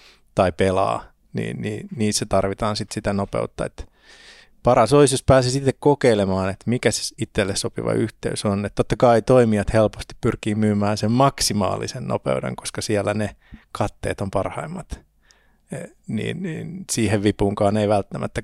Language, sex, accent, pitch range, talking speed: Finnish, male, native, 100-125 Hz, 155 wpm